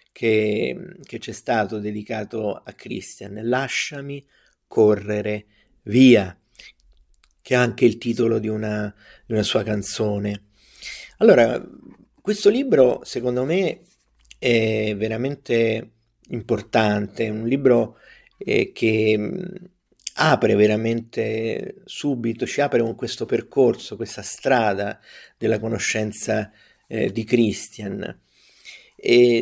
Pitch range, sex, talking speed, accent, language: 110-135 Hz, male, 100 wpm, native, Italian